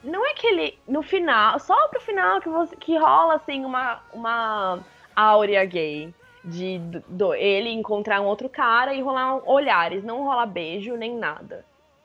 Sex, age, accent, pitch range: female, 20-39, Brazilian, 195-290 Hz